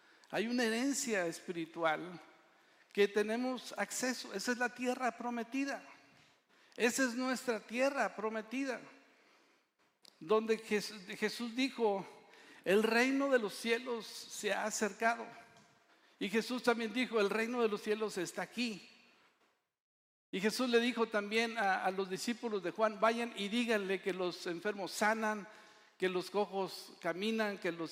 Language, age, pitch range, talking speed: Spanish, 60-79, 205-255 Hz, 135 wpm